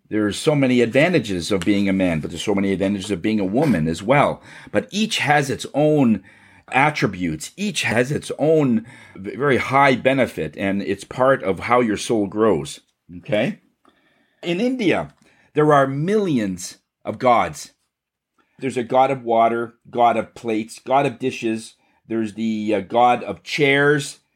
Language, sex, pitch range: English, male, 110-150 Hz